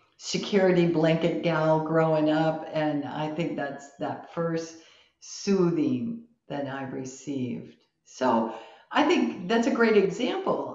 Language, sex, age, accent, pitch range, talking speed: English, female, 50-69, American, 145-180 Hz, 125 wpm